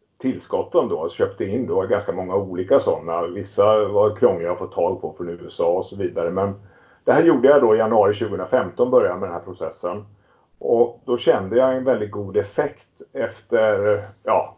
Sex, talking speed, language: male, 190 wpm, Swedish